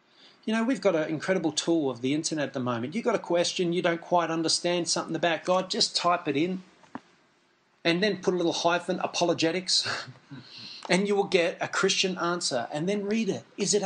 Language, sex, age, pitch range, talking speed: English, male, 30-49, 155-190 Hz, 210 wpm